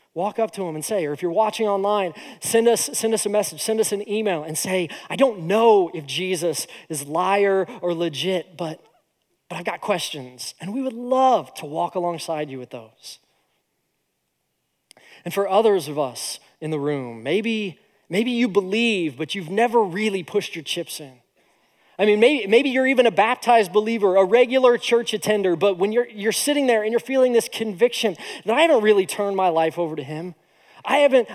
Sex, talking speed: male, 200 wpm